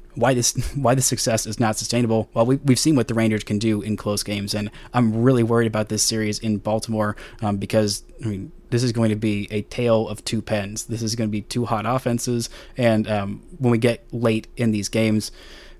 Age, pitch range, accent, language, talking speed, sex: 20-39, 110-125 Hz, American, English, 230 wpm, male